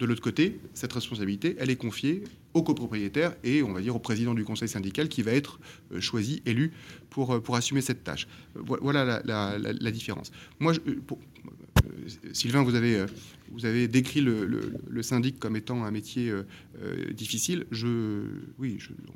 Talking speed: 175 wpm